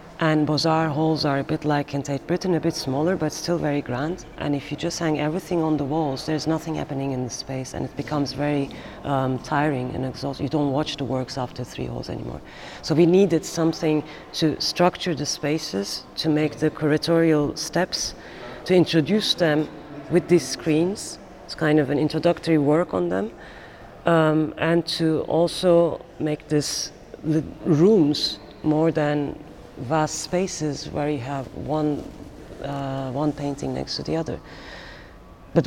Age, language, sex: 30-49, English, female